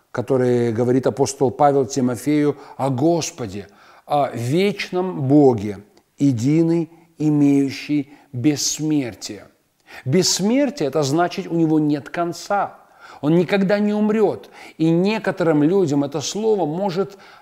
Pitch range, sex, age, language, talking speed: 140-180 Hz, male, 40-59, Russian, 105 wpm